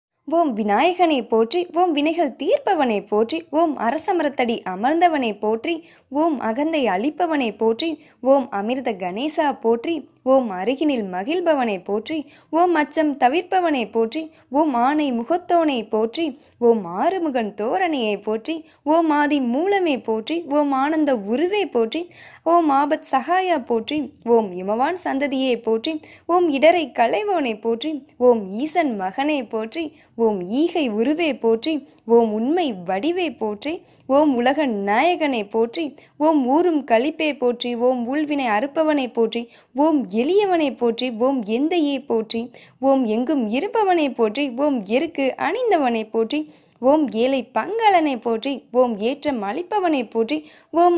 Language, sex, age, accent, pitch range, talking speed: Tamil, female, 20-39, native, 235-320 Hz, 120 wpm